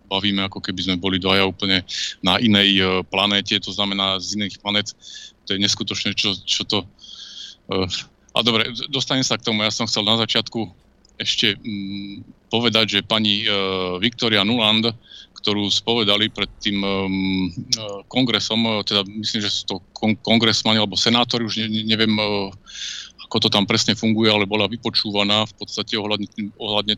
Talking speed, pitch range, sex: 145 wpm, 100-115 Hz, male